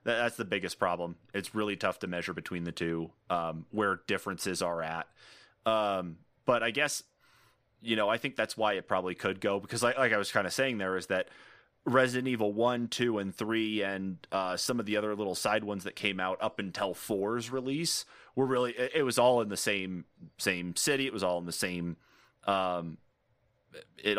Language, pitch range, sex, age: English, 90-110 Hz, male, 30-49